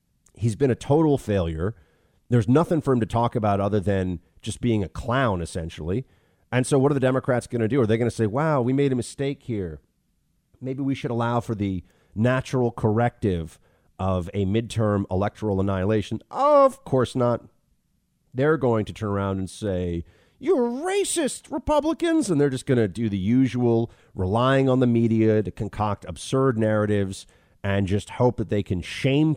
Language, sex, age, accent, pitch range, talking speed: English, male, 40-59, American, 100-140 Hz, 180 wpm